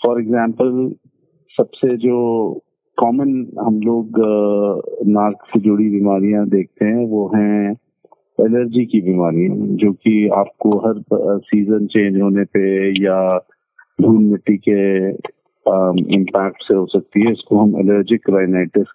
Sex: male